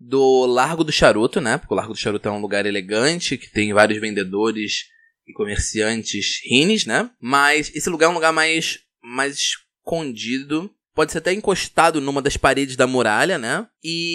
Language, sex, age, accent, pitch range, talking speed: Portuguese, male, 20-39, Brazilian, 115-160 Hz, 180 wpm